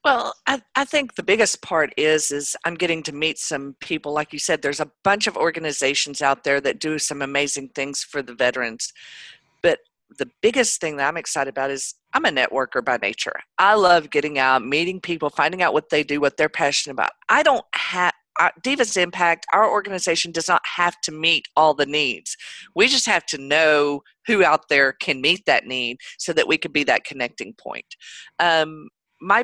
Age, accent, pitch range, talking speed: 50-69, American, 145-200 Hz, 205 wpm